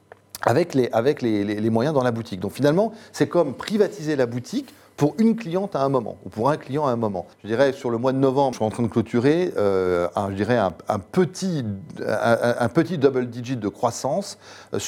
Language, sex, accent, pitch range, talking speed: French, male, French, 105-145 Hz, 230 wpm